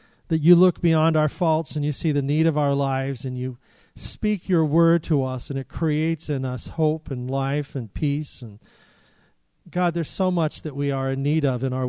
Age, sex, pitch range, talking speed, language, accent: 40-59, male, 140-180 Hz, 220 wpm, English, American